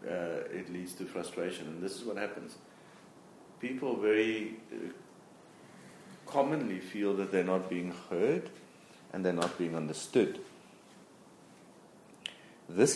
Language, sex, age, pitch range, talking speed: English, male, 50-69, 90-100 Hz, 120 wpm